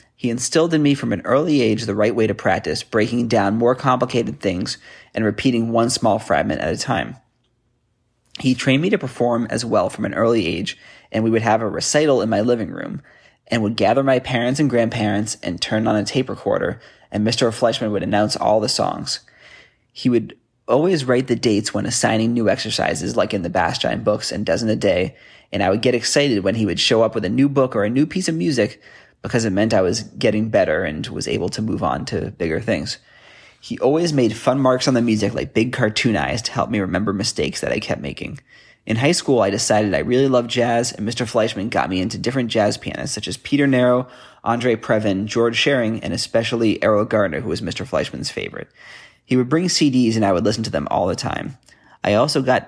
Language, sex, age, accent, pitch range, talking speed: English, male, 20-39, American, 110-130 Hz, 220 wpm